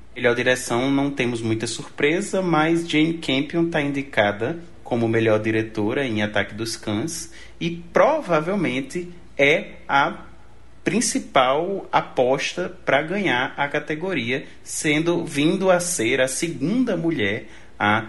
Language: Portuguese